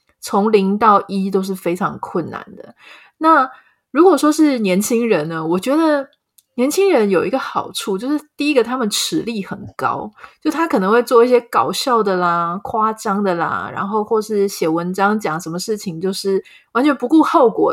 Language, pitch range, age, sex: Chinese, 190-265 Hz, 30-49, female